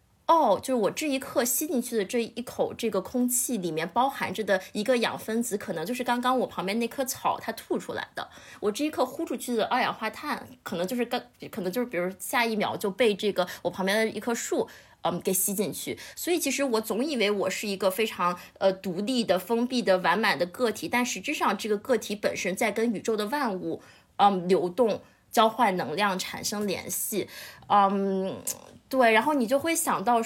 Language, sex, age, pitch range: Chinese, female, 20-39, 195-250 Hz